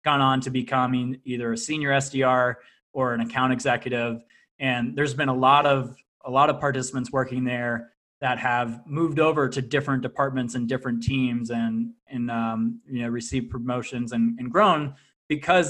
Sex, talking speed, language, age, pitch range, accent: male, 170 wpm, English, 20-39, 125-145 Hz, American